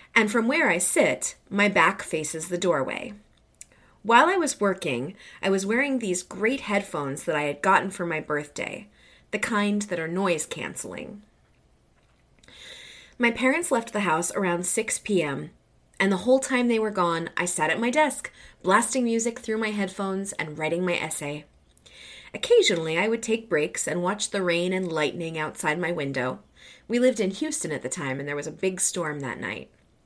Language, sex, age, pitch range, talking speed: English, female, 20-39, 170-225 Hz, 180 wpm